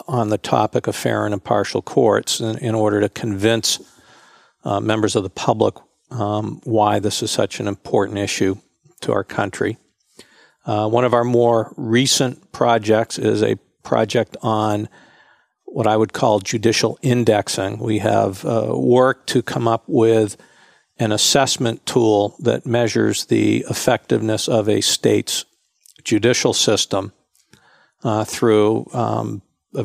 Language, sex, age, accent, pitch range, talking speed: English, male, 50-69, American, 105-115 Hz, 140 wpm